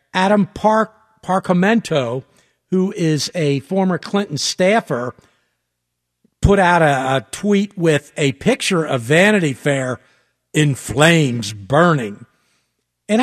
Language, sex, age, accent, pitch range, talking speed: English, male, 50-69, American, 140-200 Hz, 110 wpm